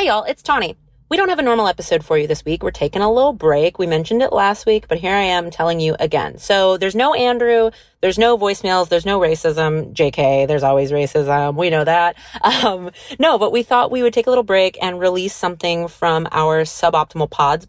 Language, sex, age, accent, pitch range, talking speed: English, female, 30-49, American, 160-235 Hz, 225 wpm